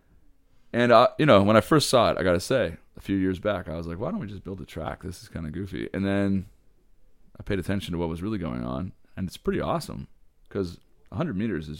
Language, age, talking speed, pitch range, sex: English, 30-49, 260 wpm, 85-105 Hz, male